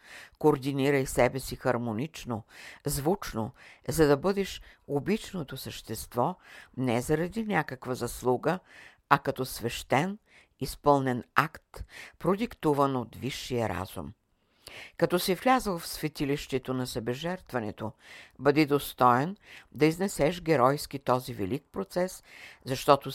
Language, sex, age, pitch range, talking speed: Bulgarian, female, 60-79, 115-145 Hz, 100 wpm